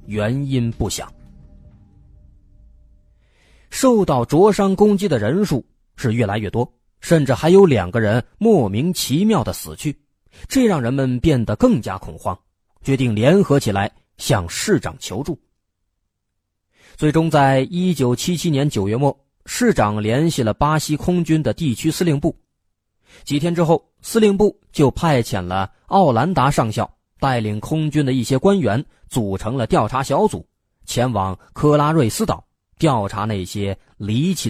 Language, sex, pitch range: Chinese, male, 100-160 Hz